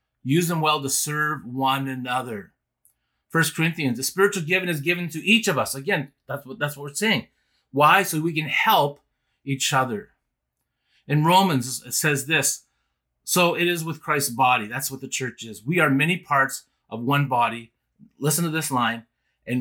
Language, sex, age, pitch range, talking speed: English, male, 30-49, 120-145 Hz, 185 wpm